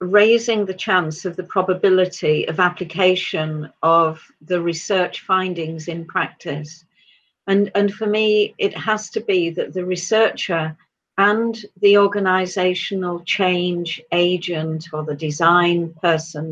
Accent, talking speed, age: British, 125 wpm, 50-69